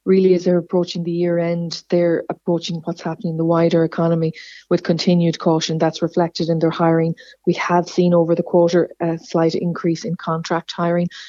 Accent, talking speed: Irish, 185 wpm